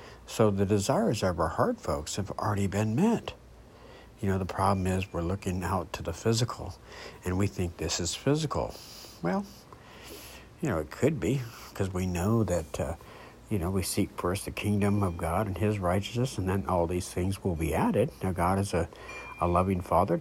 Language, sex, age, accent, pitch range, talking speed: English, male, 60-79, American, 85-105 Hz, 195 wpm